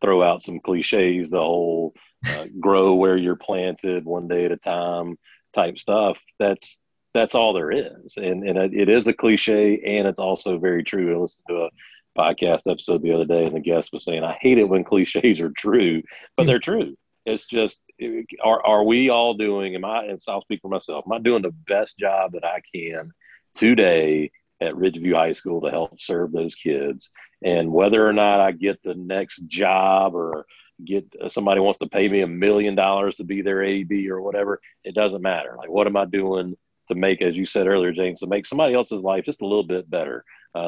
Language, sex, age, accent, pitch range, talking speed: English, male, 40-59, American, 90-100 Hz, 210 wpm